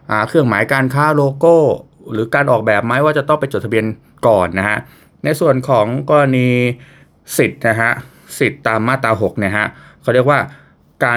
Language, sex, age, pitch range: Thai, male, 20-39, 100-130 Hz